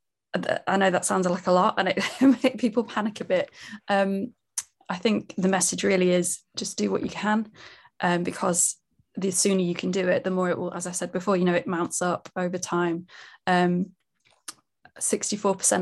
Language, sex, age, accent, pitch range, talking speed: English, female, 20-39, British, 180-195 Hz, 190 wpm